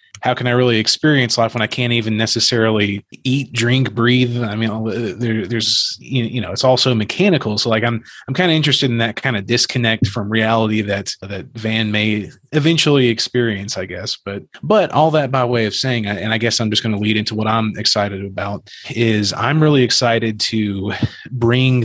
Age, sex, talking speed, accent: 30-49, male, 200 wpm, American